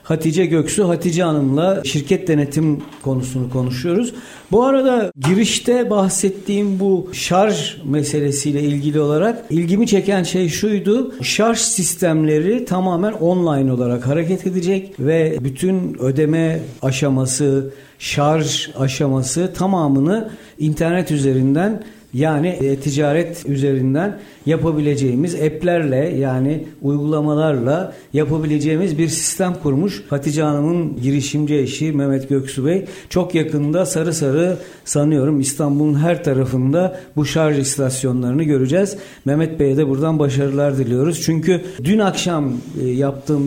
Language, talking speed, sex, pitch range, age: Turkish, 105 wpm, male, 140-185 Hz, 60-79